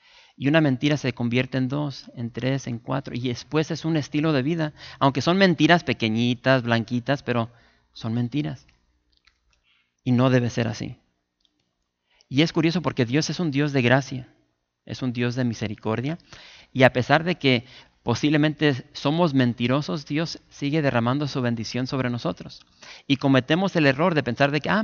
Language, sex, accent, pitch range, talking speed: English, male, Mexican, 115-145 Hz, 170 wpm